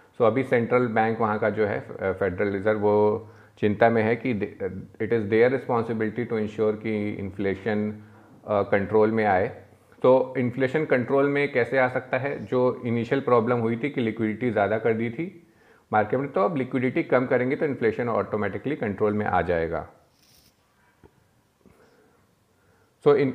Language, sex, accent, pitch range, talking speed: Hindi, male, native, 110-130 Hz, 155 wpm